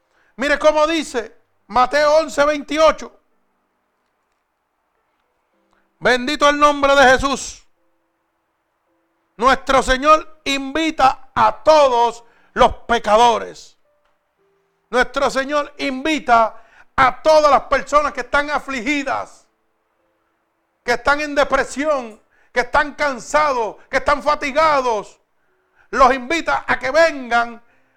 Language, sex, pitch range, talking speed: Spanish, male, 245-295 Hz, 90 wpm